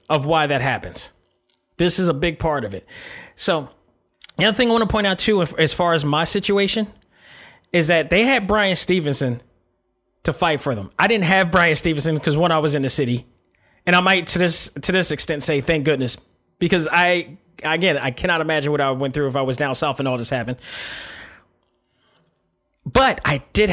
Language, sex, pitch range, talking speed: English, male, 130-175 Hz, 210 wpm